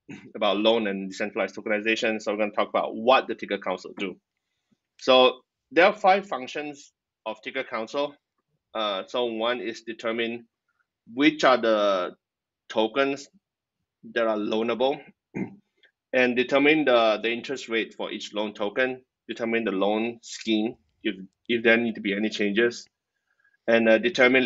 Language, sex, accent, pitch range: English, male, Malaysian, 105-120 Hz